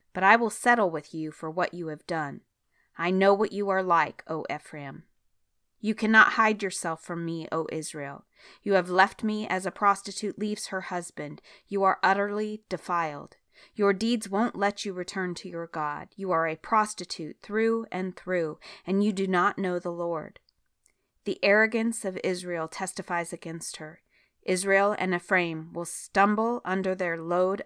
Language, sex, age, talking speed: English, female, 30-49, 170 wpm